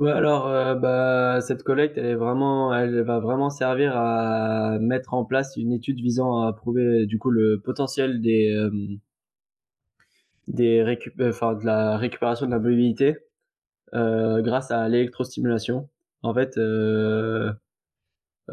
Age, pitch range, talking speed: 20-39, 110-130 Hz, 145 wpm